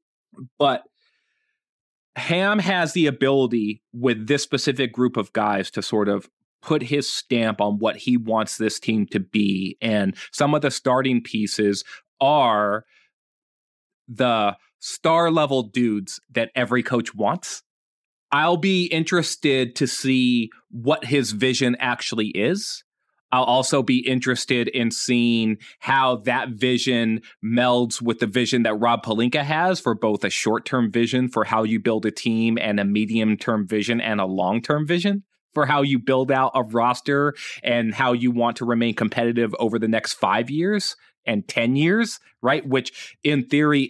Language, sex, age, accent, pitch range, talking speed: English, male, 30-49, American, 115-145 Hz, 155 wpm